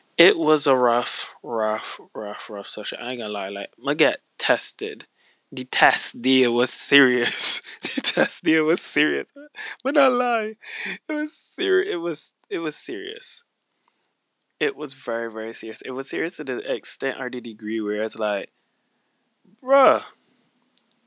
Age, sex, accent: 20-39, male, American